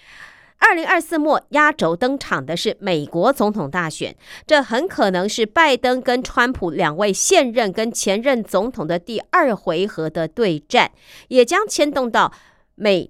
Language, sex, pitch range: Chinese, female, 180-265 Hz